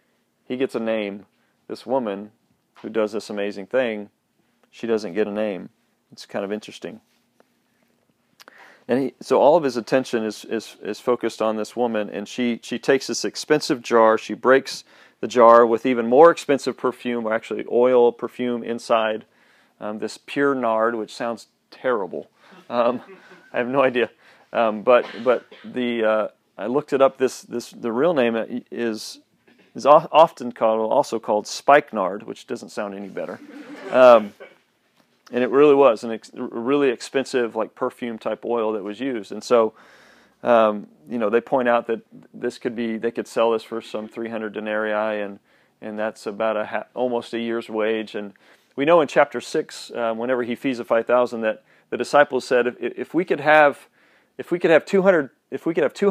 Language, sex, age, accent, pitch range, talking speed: English, male, 40-59, American, 110-130 Hz, 185 wpm